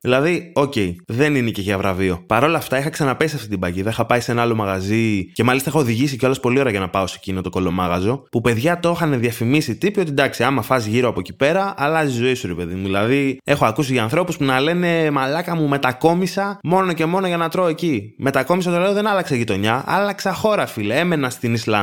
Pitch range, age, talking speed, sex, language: 110-160 Hz, 20-39, 195 wpm, male, Greek